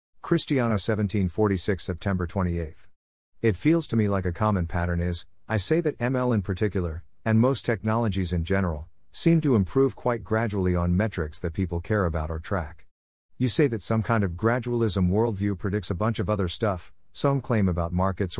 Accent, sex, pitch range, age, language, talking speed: American, male, 90-115 Hz, 50-69, English, 180 wpm